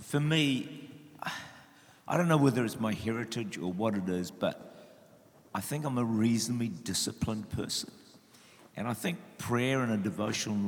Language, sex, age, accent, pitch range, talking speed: English, male, 50-69, Australian, 105-125 Hz, 155 wpm